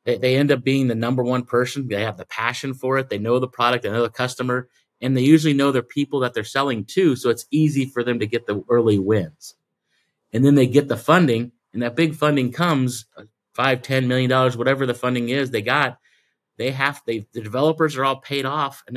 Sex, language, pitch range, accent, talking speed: male, English, 115-140 Hz, American, 225 wpm